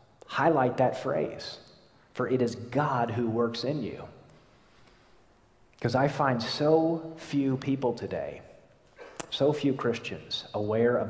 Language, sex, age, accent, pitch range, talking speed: English, male, 40-59, American, 115-165 Hz, 125 wpm